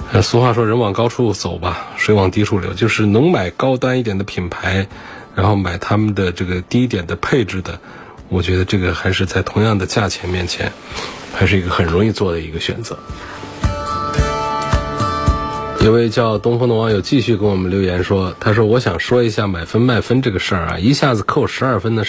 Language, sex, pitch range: Chinese, male, 90-120 Hz